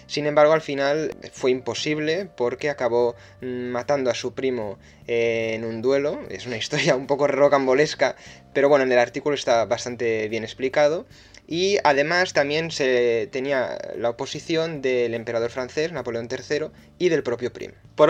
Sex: male